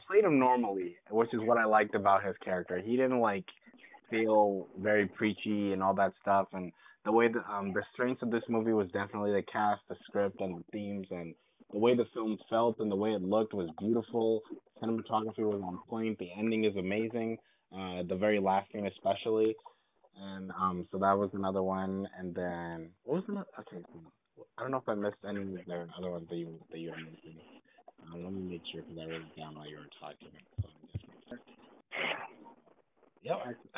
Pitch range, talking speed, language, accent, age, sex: 95-115 Hz, 195 wpm, English, American, 20-39, male